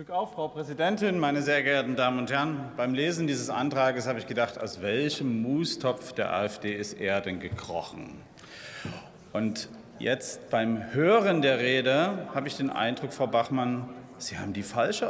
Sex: male